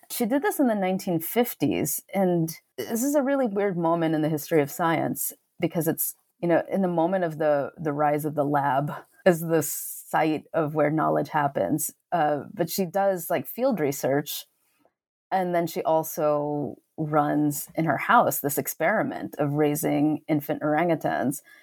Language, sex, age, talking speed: English, female, 30-49, 165 wpm